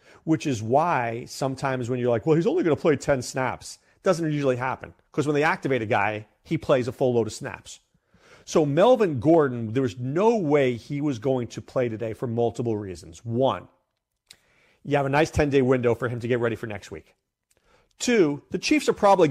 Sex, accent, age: male, American, 40-59